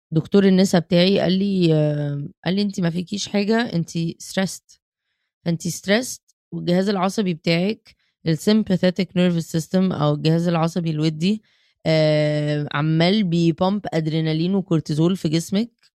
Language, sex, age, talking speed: Arabic, female, 20-39, 115 wpm